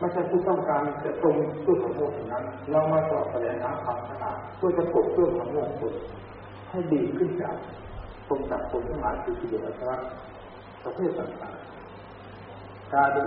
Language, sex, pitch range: Thai, male, 100-165 Hz